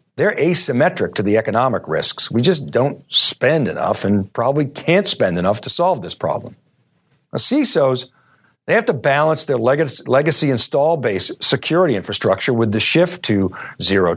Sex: male